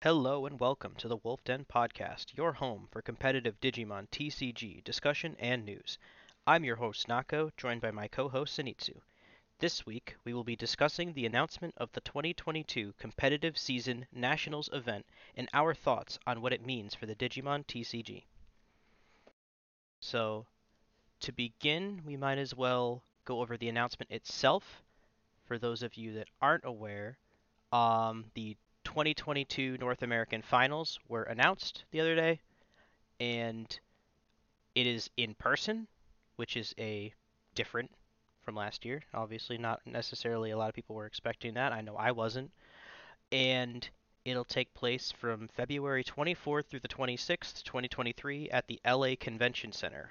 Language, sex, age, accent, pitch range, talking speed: English, male, 30-49, American, 110-135 Hz, 150 wpm